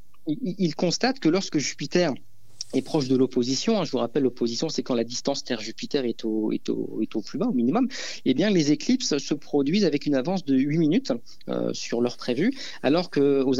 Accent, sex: French, male